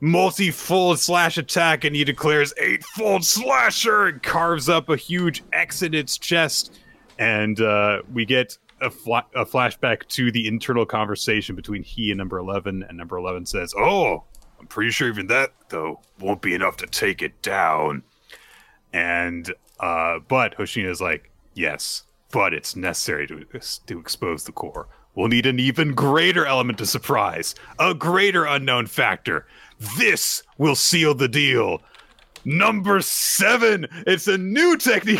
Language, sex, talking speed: English, male, 155 wpm